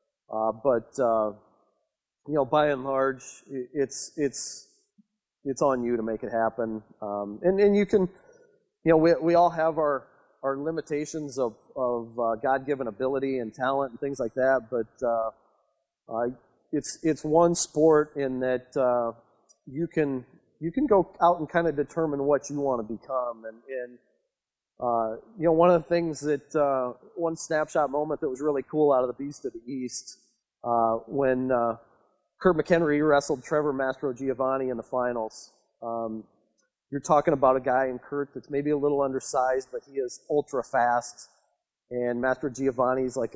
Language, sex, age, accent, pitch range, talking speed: English, male, 30-49, American, 130-160 Hz, 175 wpm